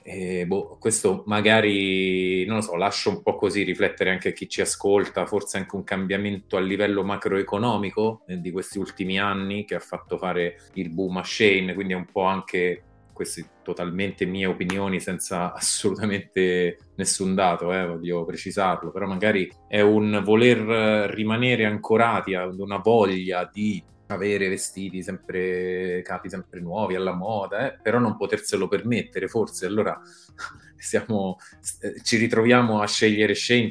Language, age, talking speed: Italian, 30-49, 150 wpm